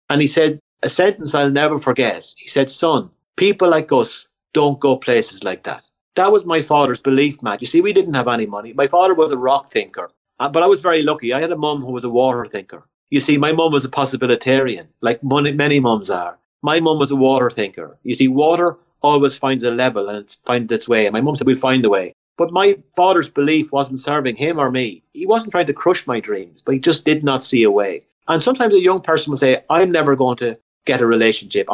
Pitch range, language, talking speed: 130-165 Hz, English, 240 wpm